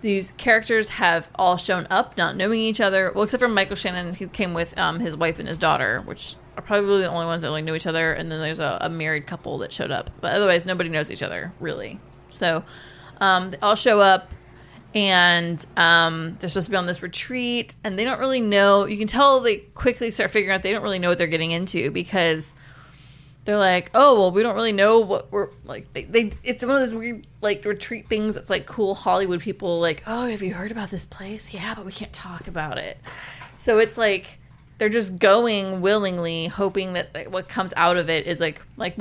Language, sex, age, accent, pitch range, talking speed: English, female, 20-39, American, 170-215 Hz, 230 wpm